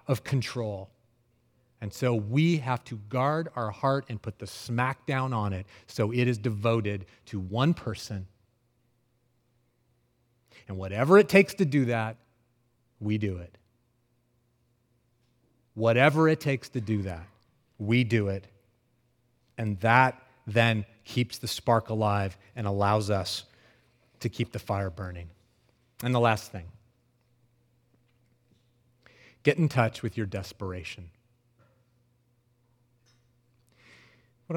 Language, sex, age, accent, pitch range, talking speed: English, male, 30-49, American, 115-155 Hz, 120 wpm